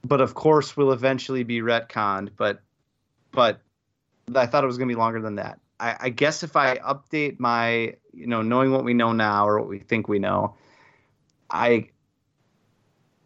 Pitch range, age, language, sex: 110-135 Hz, 30-49, English, male